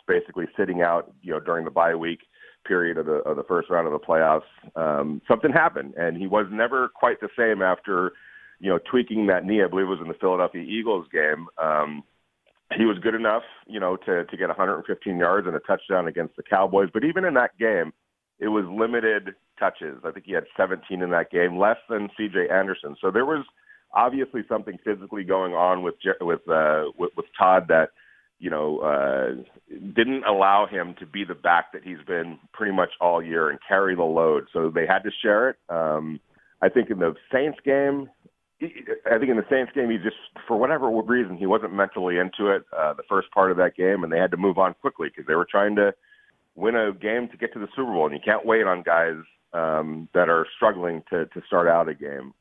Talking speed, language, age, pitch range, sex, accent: 220 wpm, English, 40-59, 85-115 Hz, male, American